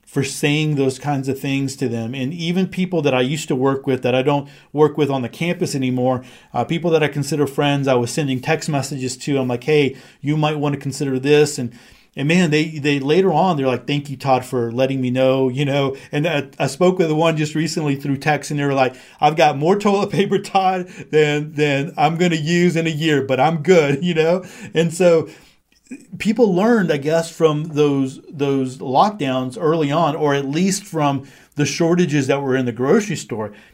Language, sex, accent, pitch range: English, male, American, 135-170 Hz